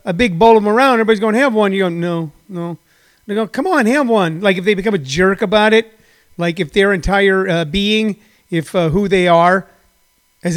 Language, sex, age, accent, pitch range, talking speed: English, male, 40-59, American, 180-225 Hz, 225 wpm